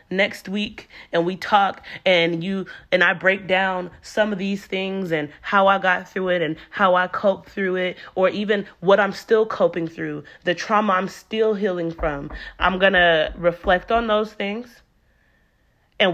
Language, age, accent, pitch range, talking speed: English, 30-49, American, 165-200 Hz, 175 wpm